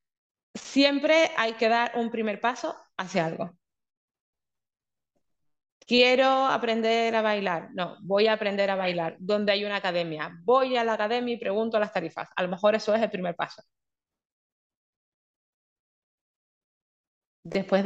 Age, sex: 20-39, female